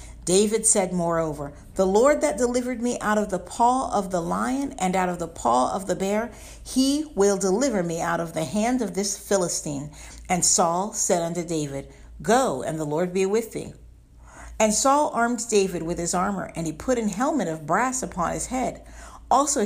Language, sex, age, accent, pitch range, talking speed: English, female, 50-69, American, 150-215 Hz, 195 wpm